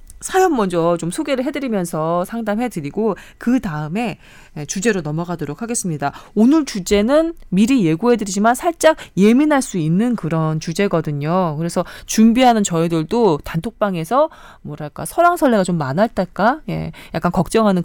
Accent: native